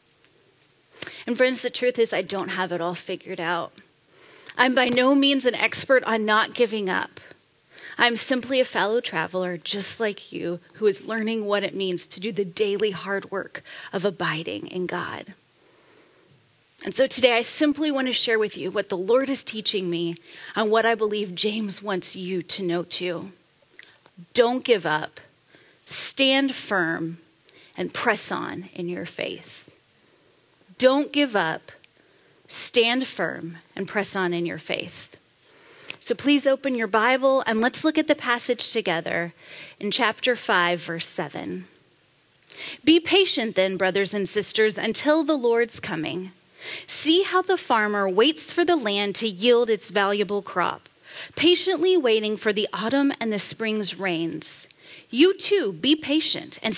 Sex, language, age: female, English, 30-49